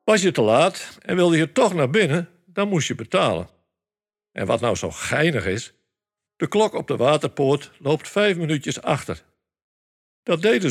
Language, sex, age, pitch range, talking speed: Dutch, male, 60-79, 115-165 Hz, 175 wpm